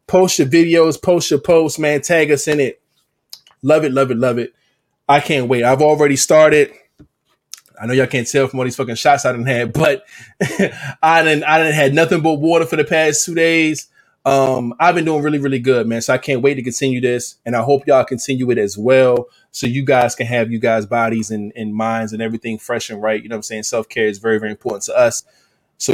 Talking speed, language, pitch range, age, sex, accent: 235 wpm, English, 125-160 Hz, 20-39, male, American